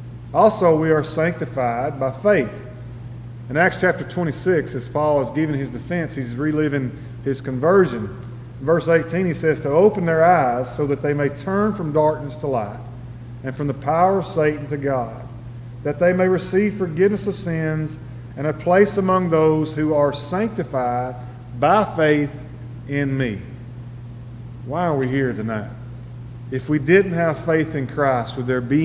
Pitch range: 120-160 Hz